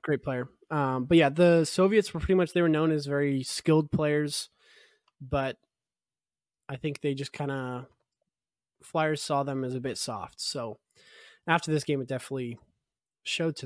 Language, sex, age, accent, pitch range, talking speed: English, male, 20-39, American, 130-160 Hz, 170 wpm